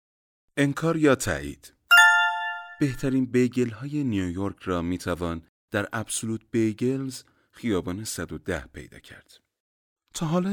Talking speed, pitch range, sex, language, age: 105 wpm, 85-135 Hz, male, Persian, 30-49